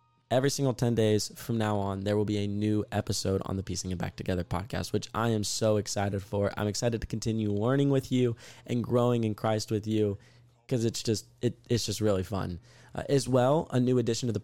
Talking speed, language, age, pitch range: 230 wpm, English, 20-39, 105-125 Hz